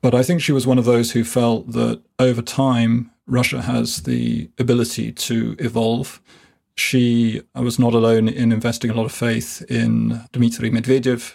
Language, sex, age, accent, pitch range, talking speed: English, male, 30-49, British, 115-125 Hz, 170 wpm